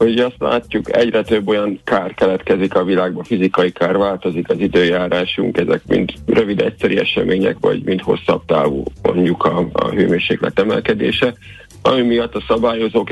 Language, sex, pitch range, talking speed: Hungarian, male, 90-115 Hz, 150 wpm